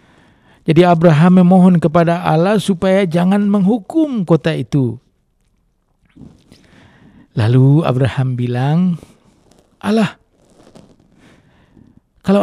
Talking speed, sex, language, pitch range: 70 wpm, male, Indonesian, 160-225 Hz